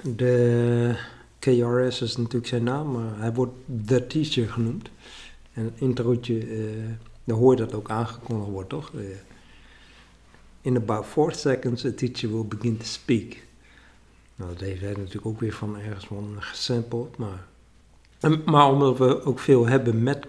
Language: Dutch